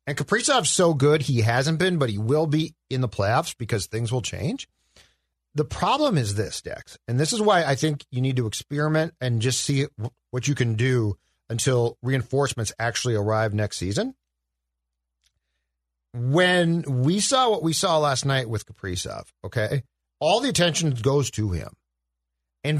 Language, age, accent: English, 40-59, American